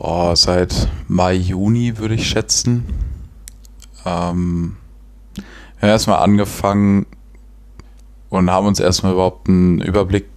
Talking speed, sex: 115 wpm, male